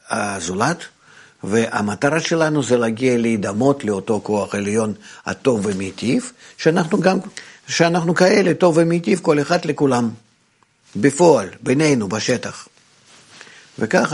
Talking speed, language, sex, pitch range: 100 wpm, Hebrew, male, 115-155 Hz